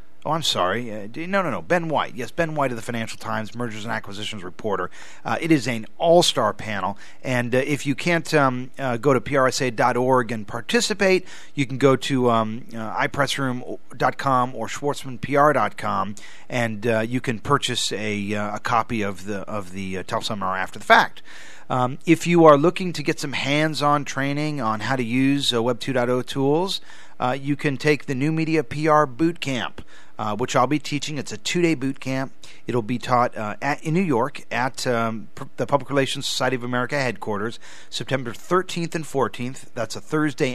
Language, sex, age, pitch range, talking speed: English, male, 40-59, 115-145 Hz, 185 wpm